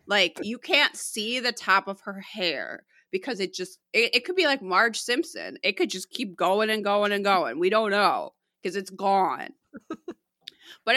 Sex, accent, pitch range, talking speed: female, American, 175-235 Hz, 190 wpm